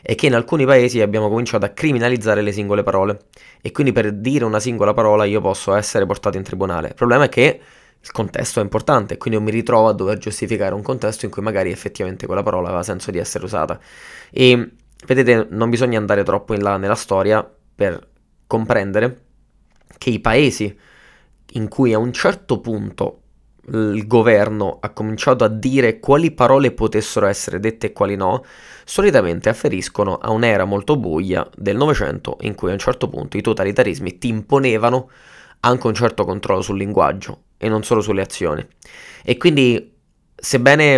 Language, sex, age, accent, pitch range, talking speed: Italian, male, 20-39, native, 105-125 Hz, 175 wpm